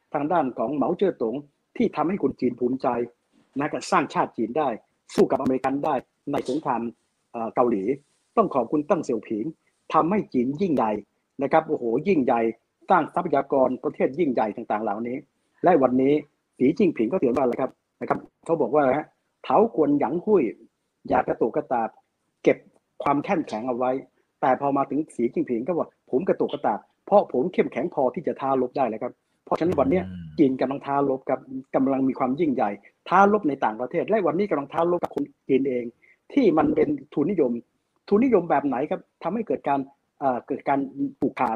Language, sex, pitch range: Thai, male, 130-170 Hz